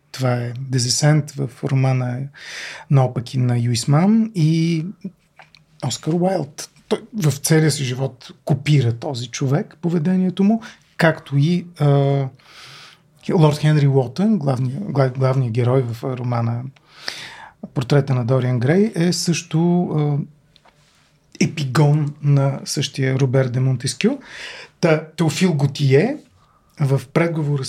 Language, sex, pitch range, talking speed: Bulgarian, male, 135-170 Hz, 105 wpm